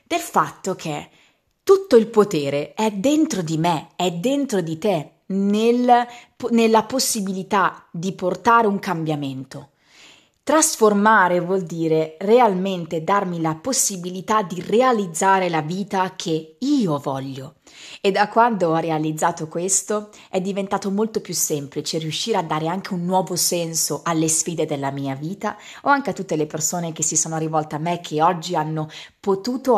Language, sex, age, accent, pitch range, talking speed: Italian, female, 30-49, native, 160-205 Hz, 145 wpm